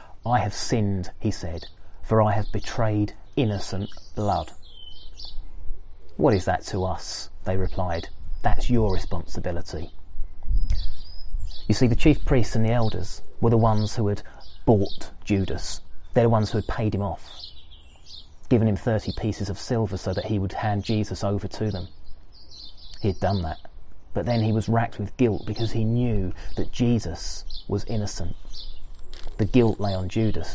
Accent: British